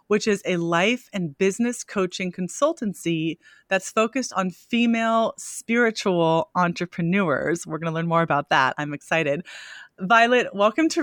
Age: 30-49